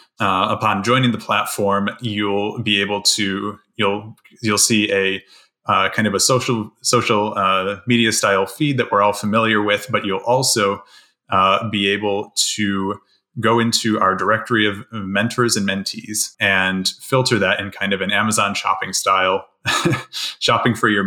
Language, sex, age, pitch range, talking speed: English, male, 20-39, 95-110 Hz, 160 wpm